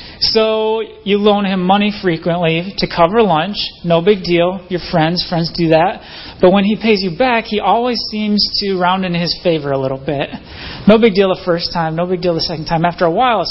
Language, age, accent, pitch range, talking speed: English, 30-49, American, 160-195 Hz, 220 wpm